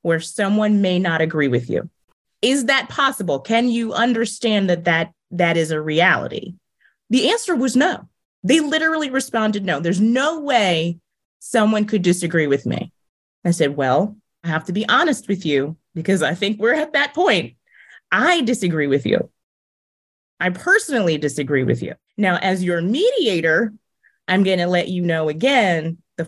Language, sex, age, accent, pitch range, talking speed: English, female, 30-49, American, 165-230 Hz, 165 wpm